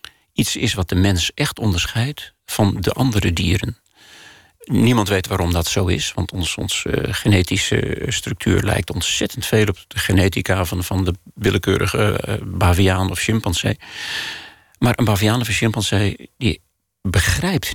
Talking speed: 140 wpm